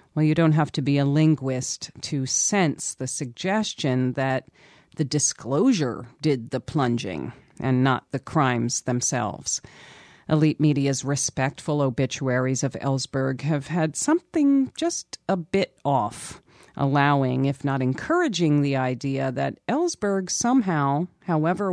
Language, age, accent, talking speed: English, 40-59, American, 125 wpm